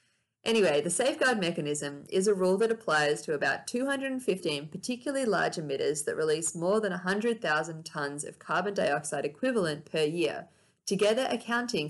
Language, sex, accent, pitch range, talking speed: English, female, Australian, 160-225 Hz, 145 wpm